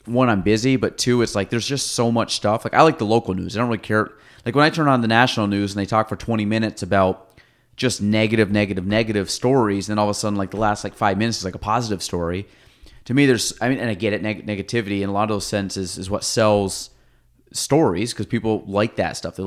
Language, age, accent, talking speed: English, 30-49, American, 270 wpm